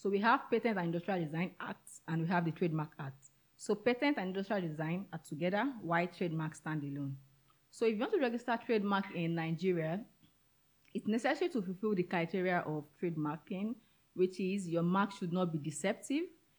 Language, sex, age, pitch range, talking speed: English, female, 30-49, 160-210 Hz, 180 wpm